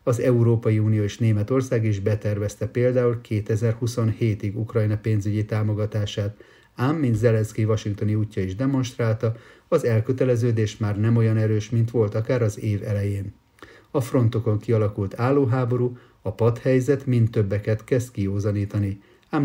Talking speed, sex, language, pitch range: 130 wpm, male, Hungarian, 105-120 Hz